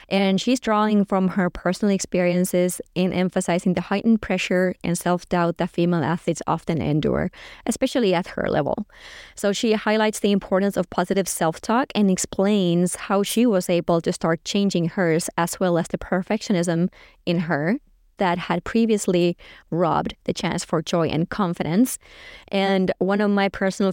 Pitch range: 175-200 Hz